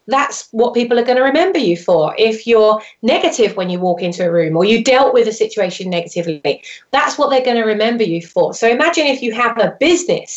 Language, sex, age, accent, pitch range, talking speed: English, female, 30-49, British, 205-265 Hz, 230 wpm